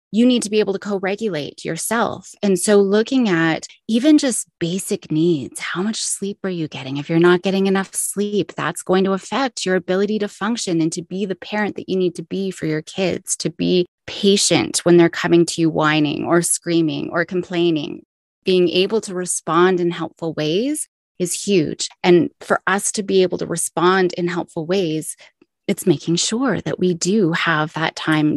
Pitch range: 165-200 Hz